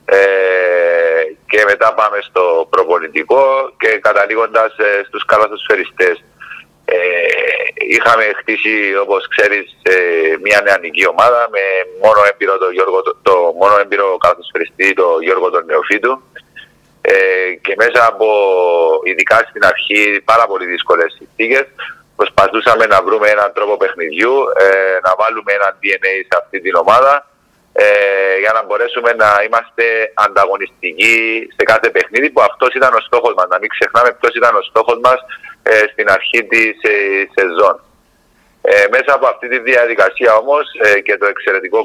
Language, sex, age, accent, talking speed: Greek, male, 30-49, Spanish, 120 wpm